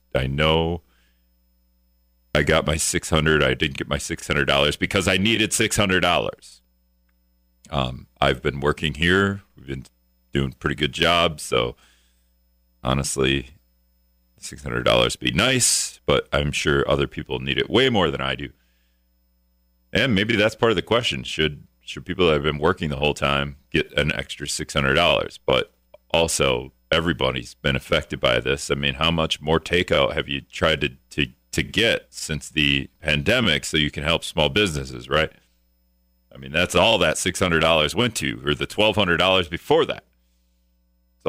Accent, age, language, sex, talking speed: American, 40-59, English, male, 160 wpm